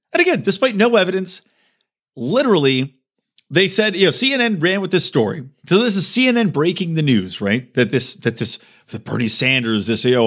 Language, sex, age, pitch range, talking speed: English, male, 40-59, 125-205 Hz, 195 wpm